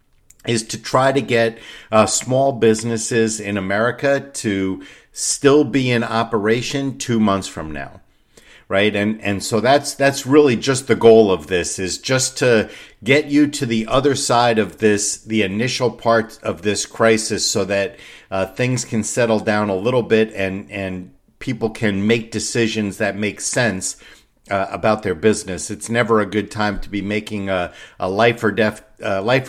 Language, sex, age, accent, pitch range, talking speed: English, male, 50-69, American, 100-115 Hz, 175 wpm